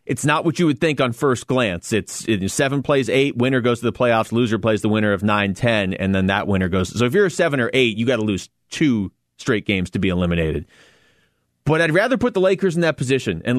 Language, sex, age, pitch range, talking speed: English, male, 30-49, 105-145 Hz, 255 wpm